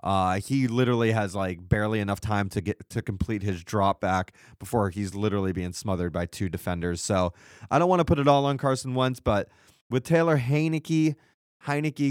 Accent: American